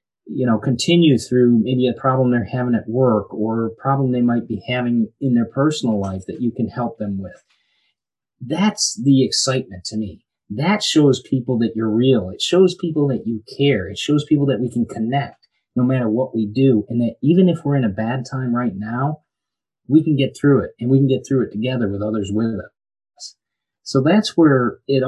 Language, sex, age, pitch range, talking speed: English, male, 30-49, 115-140 Hz, 210 wpm